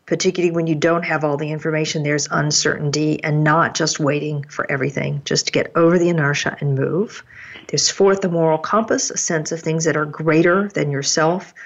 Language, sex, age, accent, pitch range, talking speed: English, female, 50-69, American, 150-185 Hz, 195 wpm